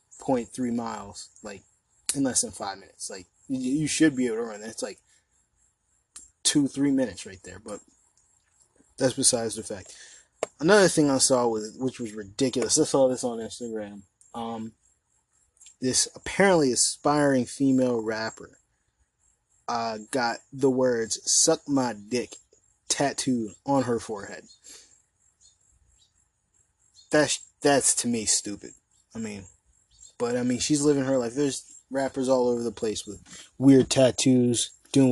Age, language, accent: 20-39, English, American